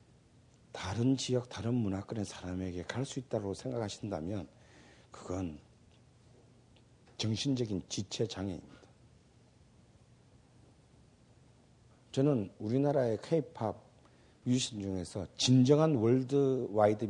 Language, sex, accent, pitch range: Korean, male, native, 105-130 Hz